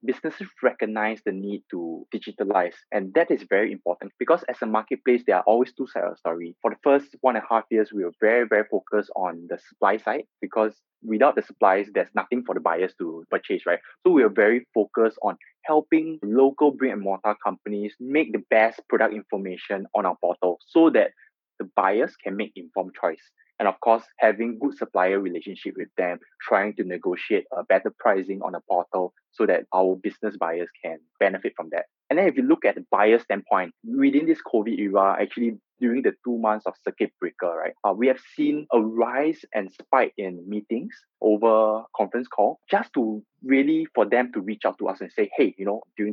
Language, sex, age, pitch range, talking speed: English, male, 20-39, 100-135 Hz, 205 wpm